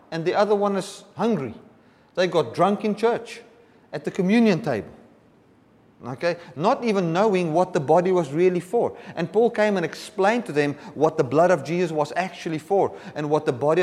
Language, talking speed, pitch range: English, 190 wpm, 145-200 Hz